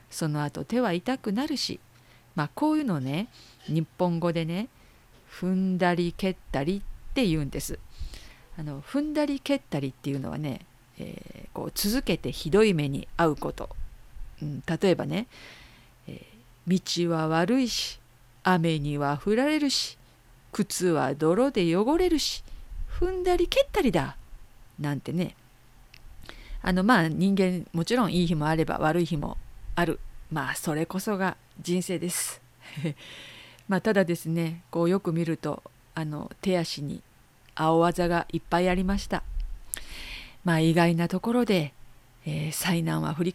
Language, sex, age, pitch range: Japanese, female, 50-69, 150-195 Hz